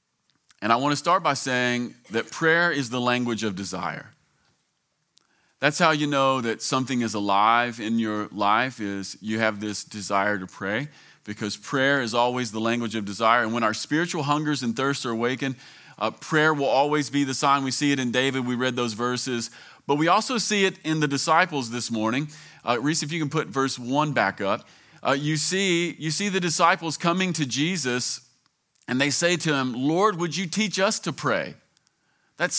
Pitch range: 125-155 Hz